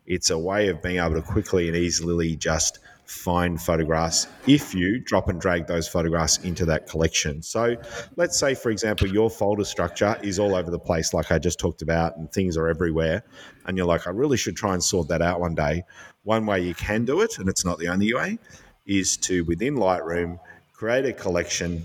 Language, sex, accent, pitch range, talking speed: English, male, Australian, 85-100 Hz, 210 wpm